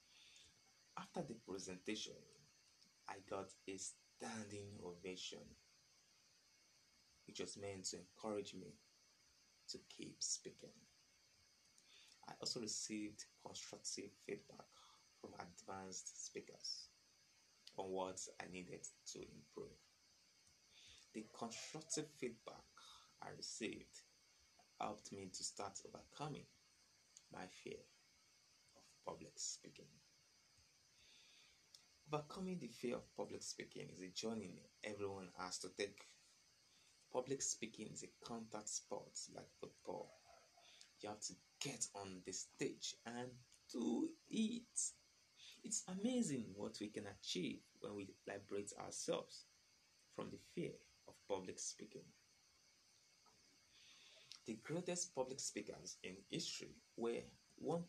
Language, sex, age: English, male, 30-49